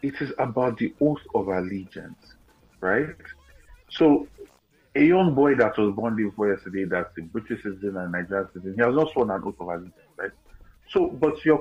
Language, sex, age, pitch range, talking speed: English, male, 30-49, 95-130 Hz, 185 wpm